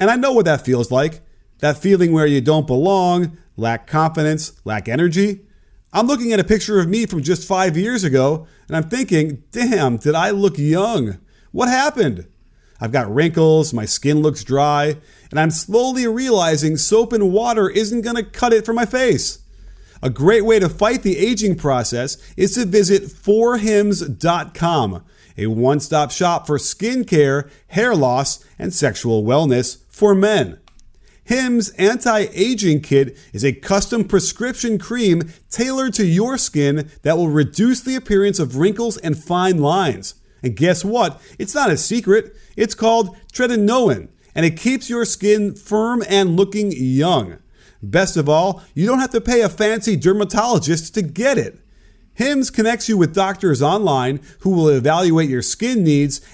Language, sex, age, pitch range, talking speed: English, male, 30-49, 150-220 Hz, 160 wpm